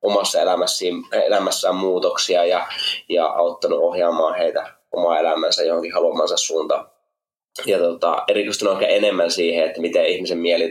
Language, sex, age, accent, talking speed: Finnish, male, 20-39, native, 130 wpm